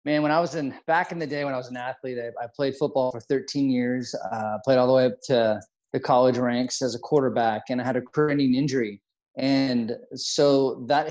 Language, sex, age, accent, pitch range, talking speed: English, male, 20-39, American, 130-155 Hz, 240 wpm